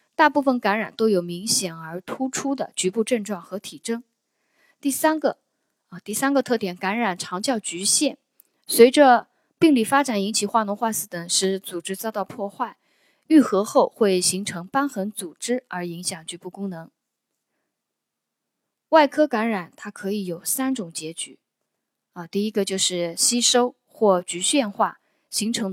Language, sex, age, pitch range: Chinese, female, 20-39, 185-255 Hz